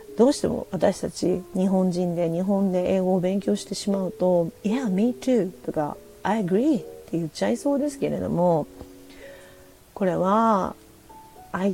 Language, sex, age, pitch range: Japanese, female, 40-59, 175-255 Hz